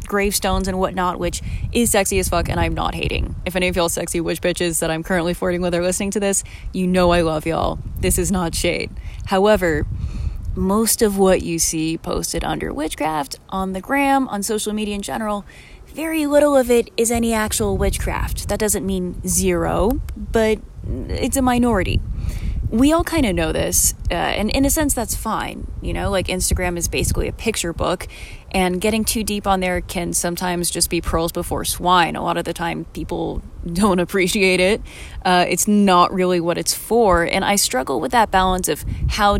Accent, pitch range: American, 170-210 Hz